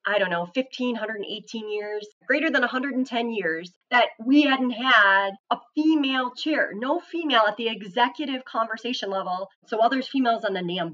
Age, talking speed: 30-49, 165 wpm